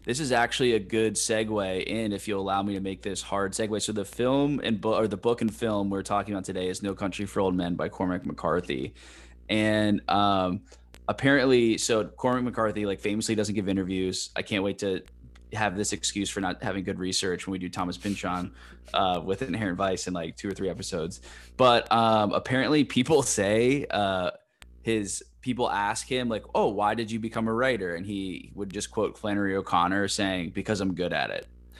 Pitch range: 95-110 Hz